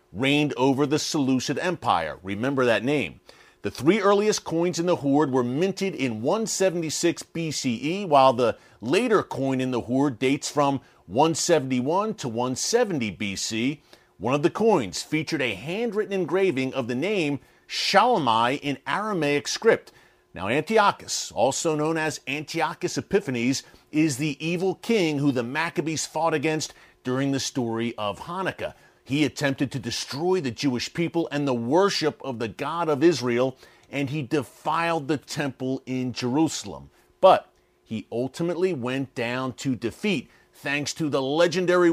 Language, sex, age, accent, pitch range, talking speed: English, male, 40-59, American, 130-165 Hz, 145 wpm